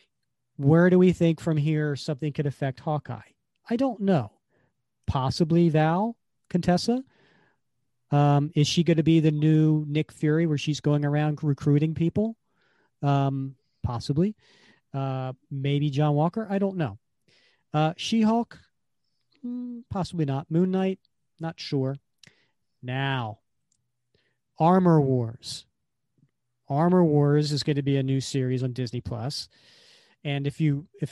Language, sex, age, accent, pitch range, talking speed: English, male, 40-59, American, 135-160 Hz, 130 wpm